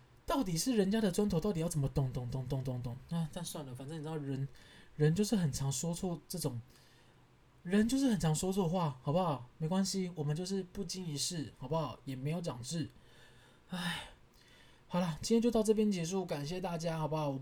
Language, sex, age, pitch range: Chinese, male, 20-39, 140-185 Hz